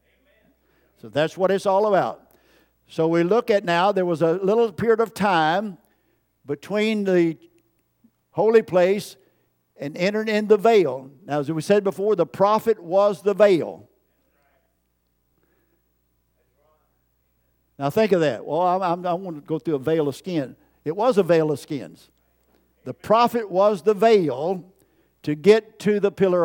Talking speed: 150 wpm